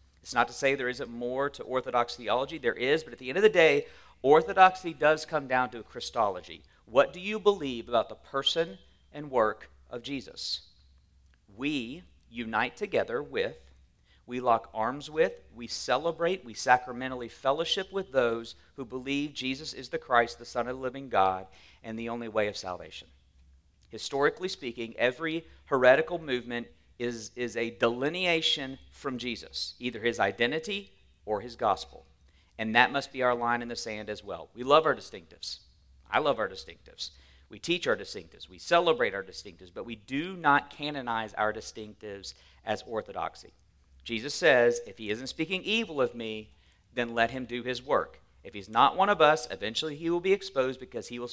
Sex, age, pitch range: male, 40-59, 105-140 Hz